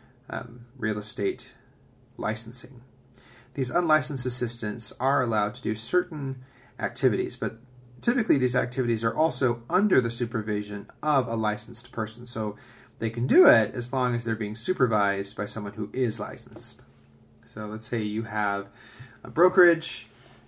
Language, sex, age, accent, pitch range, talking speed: English, male, 30-49, American, 110-125 Hz, 145 wpm